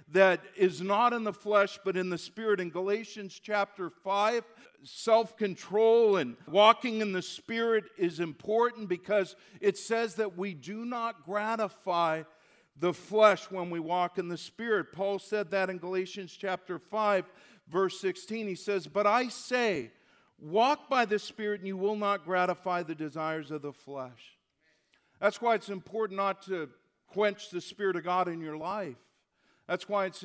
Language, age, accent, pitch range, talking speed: English, 50-69, American, 175-210 Hz, 165 wpm